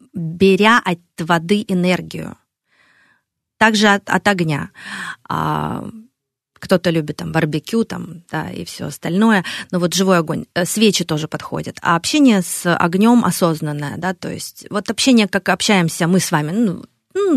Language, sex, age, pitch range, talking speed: Russian, female, 30-49, 155-200 Hz, 145 wpm